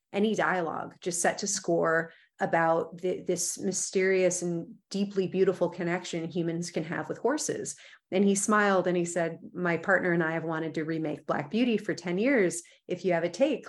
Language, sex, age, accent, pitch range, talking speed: English, female, 30-49, American, 170-205 Hz, 185 wpm